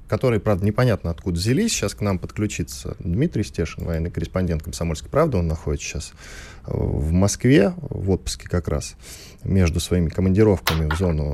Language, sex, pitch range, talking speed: Russian, male, 85-130 Hz, 155 wpm